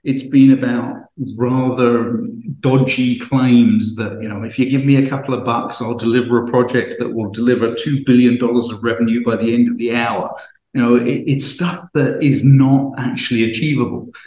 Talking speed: 185 wpm